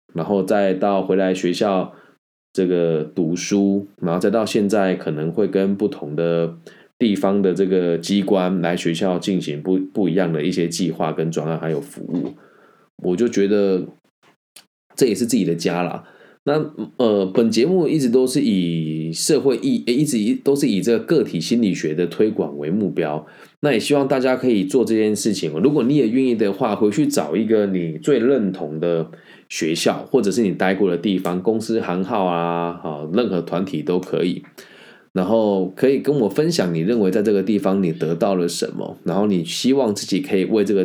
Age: 20-39